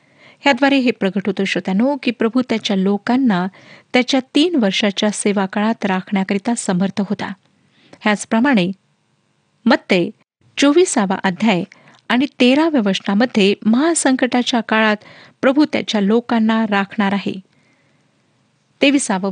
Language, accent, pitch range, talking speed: Marathi, native, 200-270 Hz, 50 wpm